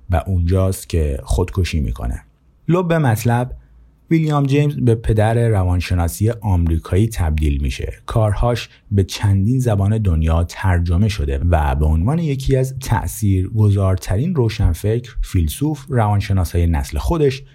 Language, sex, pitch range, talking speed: Persian, male, 80-115 Hz, 115 wpm